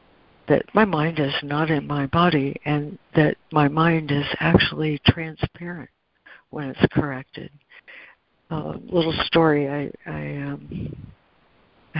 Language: English